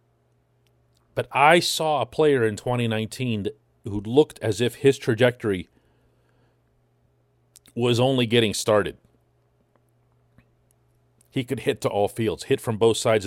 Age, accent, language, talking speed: 40-59, American, English, 120 wpm